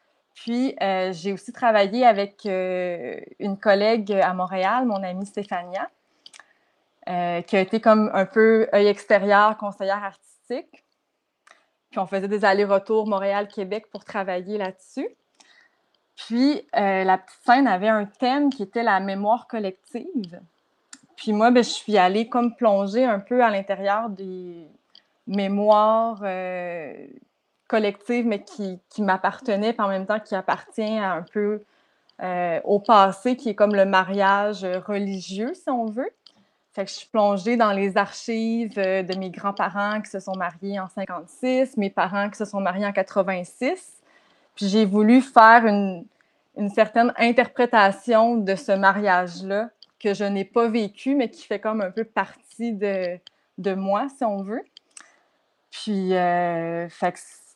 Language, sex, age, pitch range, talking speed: French, female, 20-39, 195-230 Hz, 150 wpm